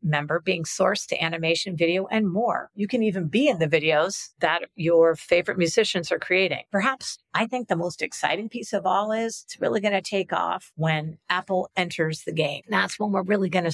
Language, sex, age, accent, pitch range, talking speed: English, female, 50-69, American, 155-200 Hz, 210 wpm